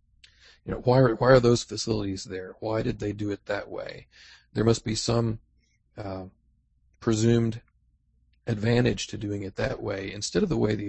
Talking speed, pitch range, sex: 175 wpm, 95-110 Hz, male